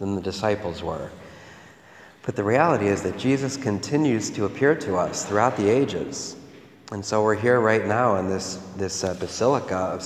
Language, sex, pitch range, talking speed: English, male, 95-115 Hz, 180 wpm